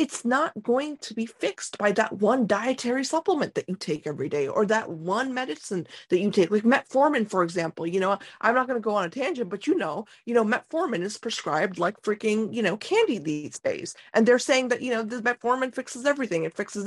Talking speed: 230 wpm